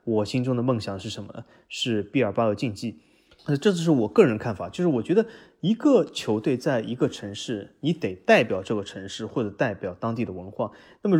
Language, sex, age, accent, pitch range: Chinese, male, 20-39, native, 105-135 Hz